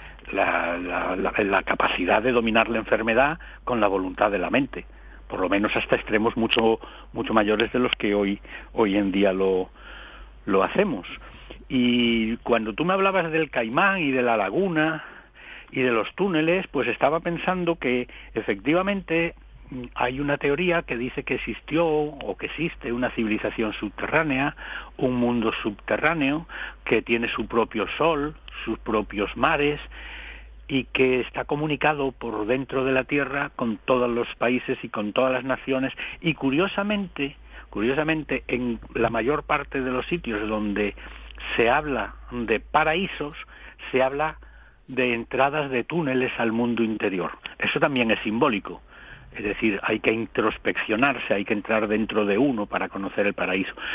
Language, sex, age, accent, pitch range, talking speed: English, male, 60-79, Spanish, 115-150 Hz, 150 wpm